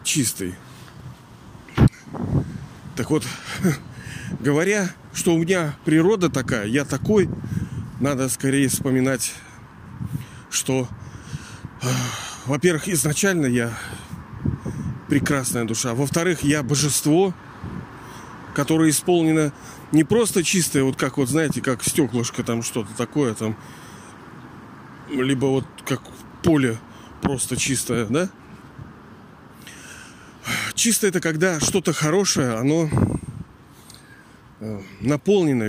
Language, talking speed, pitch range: Russian, 85 wpm, 120-160 Hz